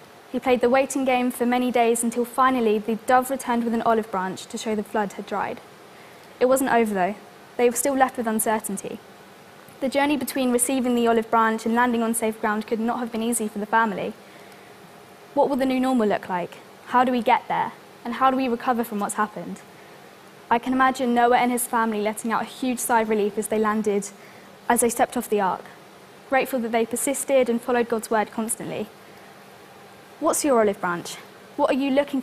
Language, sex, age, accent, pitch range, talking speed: English, female, 10-29, British, 220-255 Hz, 210 wpm